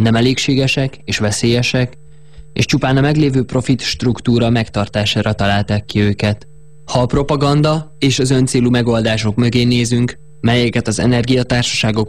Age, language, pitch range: 20-39, Hungarian, 115-140 Hz